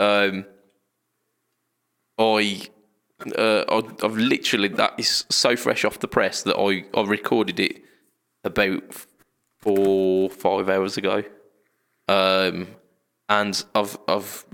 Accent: British